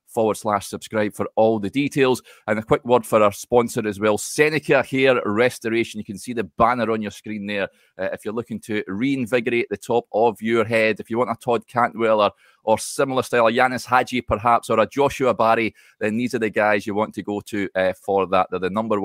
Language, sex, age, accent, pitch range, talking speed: English, male, 30-49, British, 105-125 Hz, 225 wpm